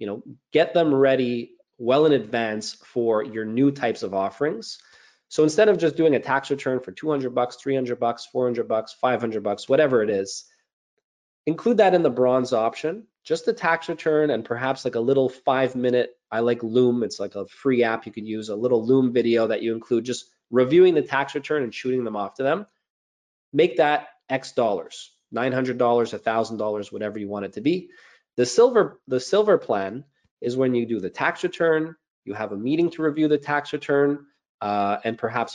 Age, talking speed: 20-39, 195 wpm